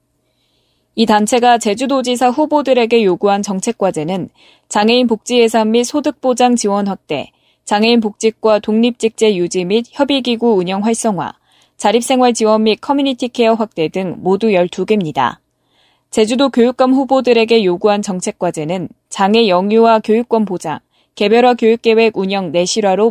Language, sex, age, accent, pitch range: Korean, female, 20-39, native, 200-245 Hz